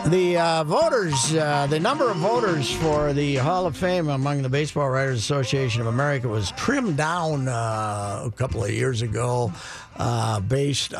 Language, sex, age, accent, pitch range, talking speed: English, male, 50-69, American, 115-145 Hz, 170 wpm